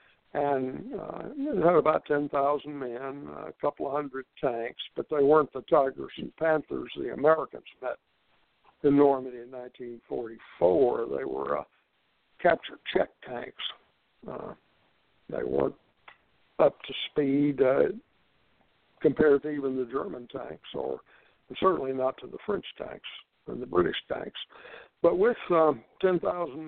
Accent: American